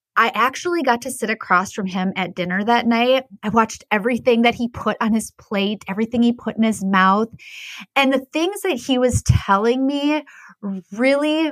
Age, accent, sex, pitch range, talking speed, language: 20-39, American, female, 190-235 Hz, 190 wpm, English